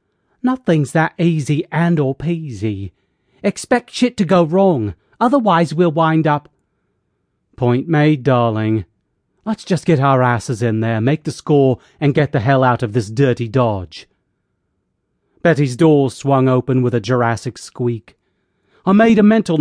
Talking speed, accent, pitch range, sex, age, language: 150 wpm, British, 115-160 Hz, male, 40-59, English